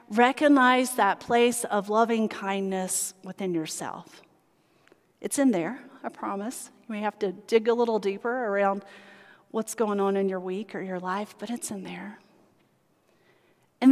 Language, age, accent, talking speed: English, 40-59, American, 150 wpm